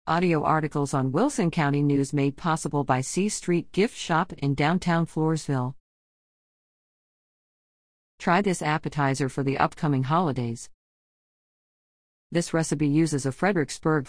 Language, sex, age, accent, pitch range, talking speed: English, female, 40-59, American, 130-195 Hz, 120 wpm